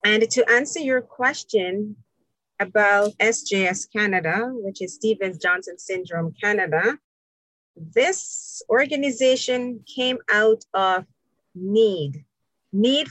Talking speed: 90 wpm